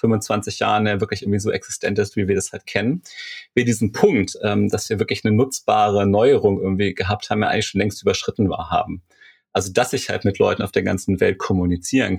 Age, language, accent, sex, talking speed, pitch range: 40-59, German, German, male, 210 wpm, 100-110 Hz